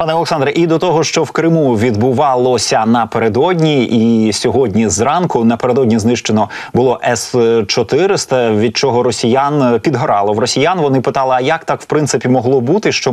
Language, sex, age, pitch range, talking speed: Ukrainian, male, 20-39, 115-140 Hz, 150 wpm